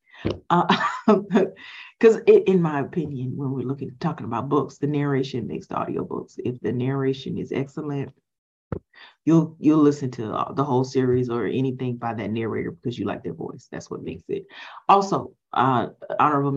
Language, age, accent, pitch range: English, 30-49, American, 125-155 Hz